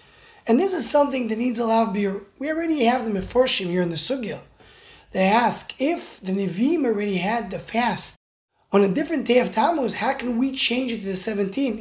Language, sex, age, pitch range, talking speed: English, male, 20-39, 190-260 Hz, 215 wpm